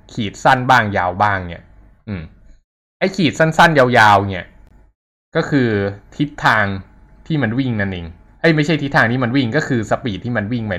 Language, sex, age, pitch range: Thai, male, 20-39, 95-130 Hz